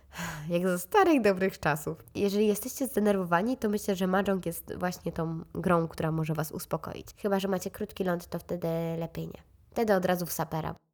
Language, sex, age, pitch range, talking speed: Polish, female, 20-39, 170-205 Hz, 185 wpm